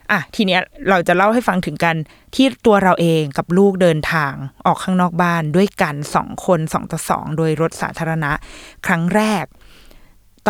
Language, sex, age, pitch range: Thai, female, 20-39, 160-200 Hz